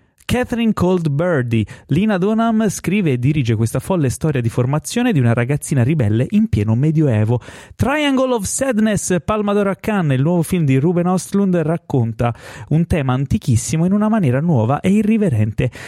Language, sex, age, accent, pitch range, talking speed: Italian, male, 30-49, native, 130-200 Hz, 155 wpm